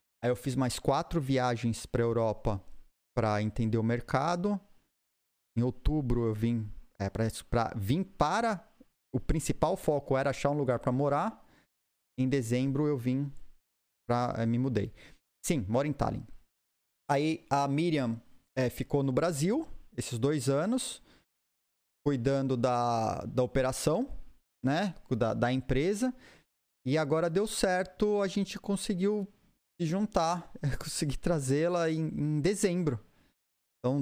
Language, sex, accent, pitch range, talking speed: Portuguese, male, Brazilian, 120-165 Hz, 130 wpm